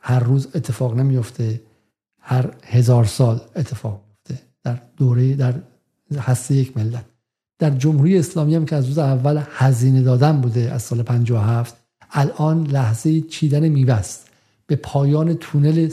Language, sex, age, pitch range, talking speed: Persian, male, 50-69, 125-150 Hz, 135 wpm